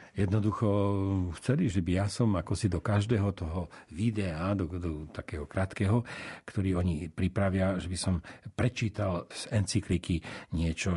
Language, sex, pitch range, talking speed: Slovak, male, 90-115 Hz, 150 wpm